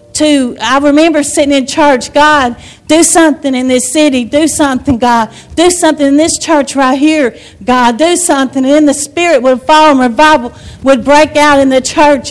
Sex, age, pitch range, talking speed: female, 40-59, 275-330 Hz, 190 wpm